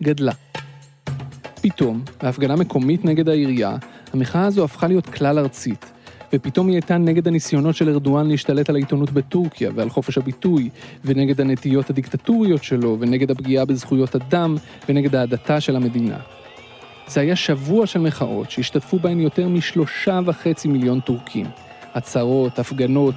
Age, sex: 30-49, male